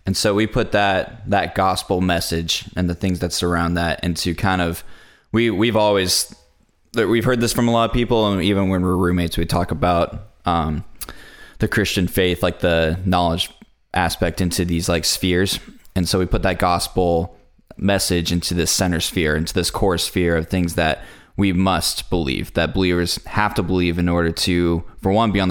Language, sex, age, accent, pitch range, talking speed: English, male, 20-39, American, 85-100 Hz, 190 wpm